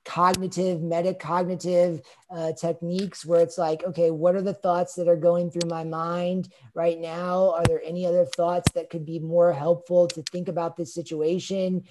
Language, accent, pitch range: English, American, 170-195 Hz